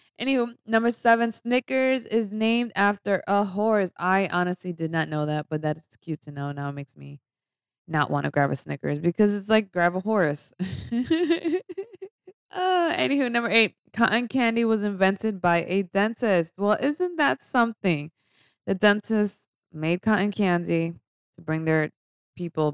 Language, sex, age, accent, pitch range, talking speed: English, female, 20-39, American, 150-220 Hz, 160 wpm